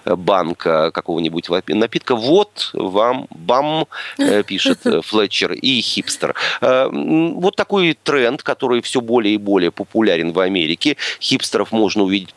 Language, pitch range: Russian, 90-140 Hz